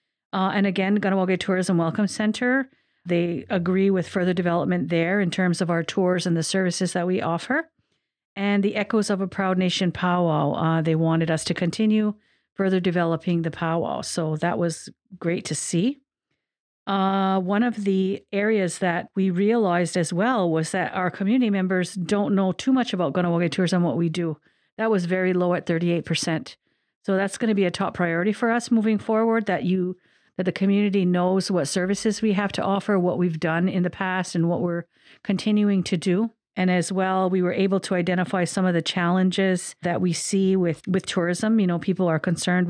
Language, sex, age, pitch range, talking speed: English, female, 50-69, 175-195 Hz, 195 wpm